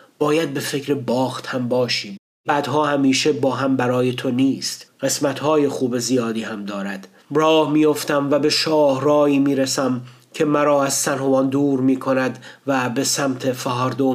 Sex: male